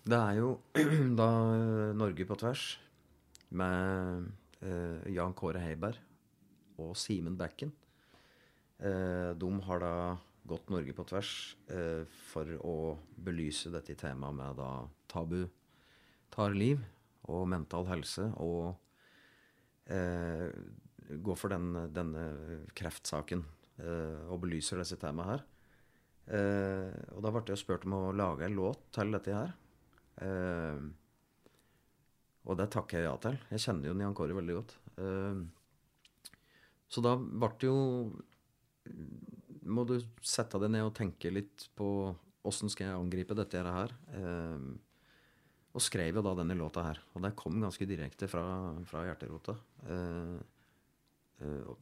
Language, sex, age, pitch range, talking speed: English, male, 30-49, 85-105 Hz, 135 wpm